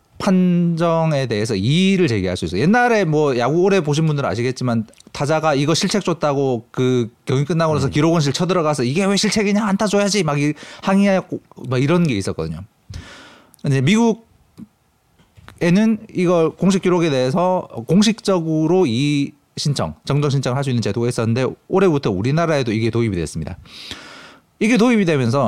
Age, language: 40-59, Korean